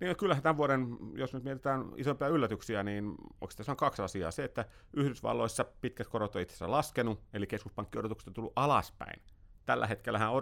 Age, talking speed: 30-49, 165 wpm